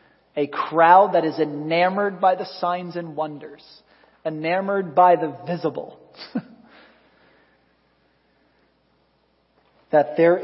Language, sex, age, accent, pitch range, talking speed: English, male, 40-59, American, 150-180 Hz, 90 wpm